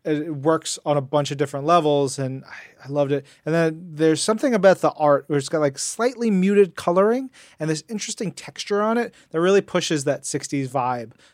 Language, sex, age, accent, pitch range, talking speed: English, male, 30-49, American, 145-190 Hz, 200 wpm